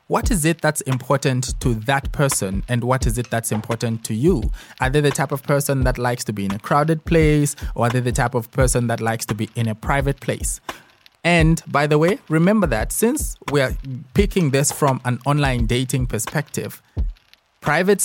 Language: English